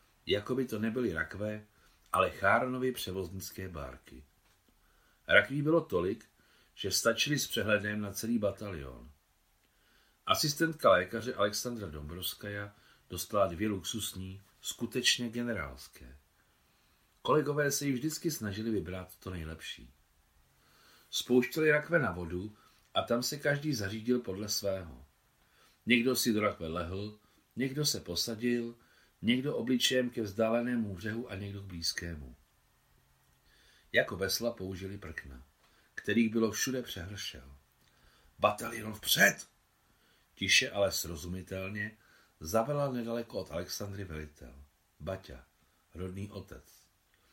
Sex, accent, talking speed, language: male, native, 110 wpm, Czech